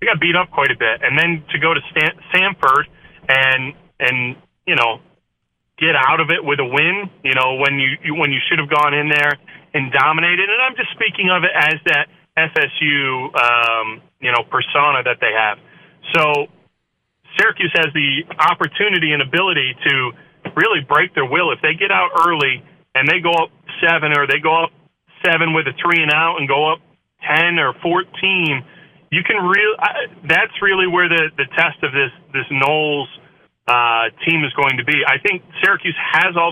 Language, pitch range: English, 140-165 Hz